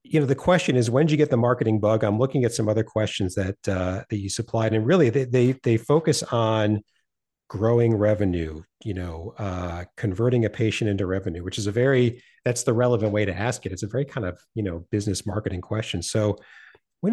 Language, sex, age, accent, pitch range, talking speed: English, male, 40-59, American, 105-135 Hz, 220 wpm